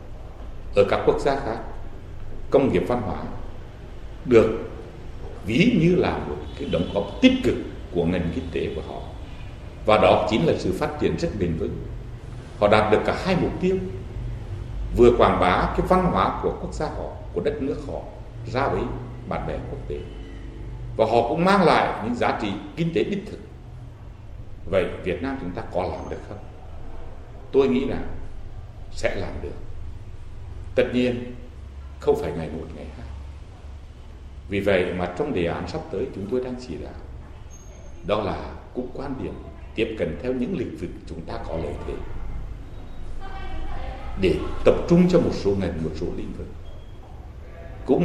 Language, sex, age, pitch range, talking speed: Vietnamese, male, 60-79, 85-120 Hz, 170 wpm